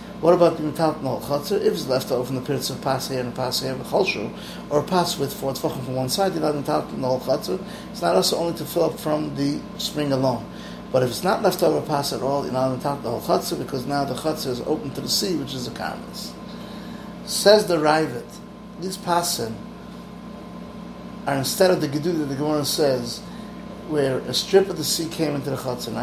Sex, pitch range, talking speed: male, 135-180 Hz, 240 wpm